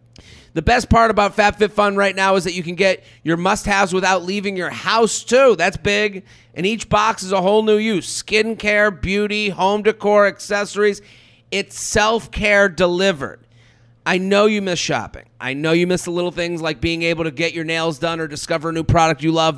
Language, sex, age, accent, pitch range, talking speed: English, male, 30-49, American, 160-205 Hz, 195 wpm